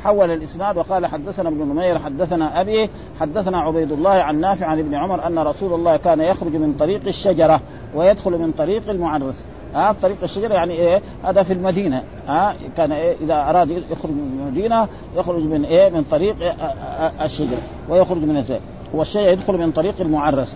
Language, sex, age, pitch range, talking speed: Arabic, male, 50-69, 155-190 Hz, 170 wpm